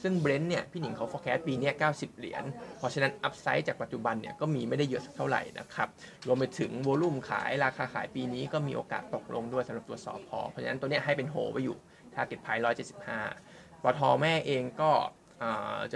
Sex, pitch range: male, 125-150 Hz